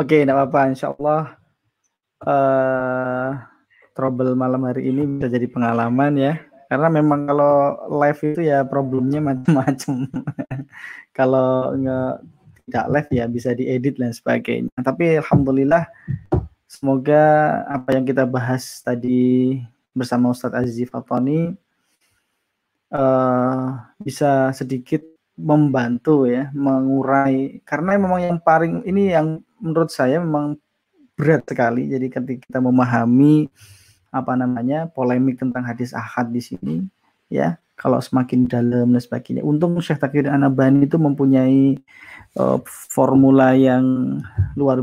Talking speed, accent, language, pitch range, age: 120 wpm, native, Indonesian, 125-145 Hz, 20-39